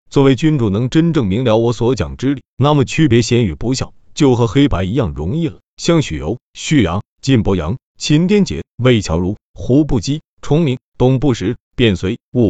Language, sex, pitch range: Chinese, male, 110-155 Hz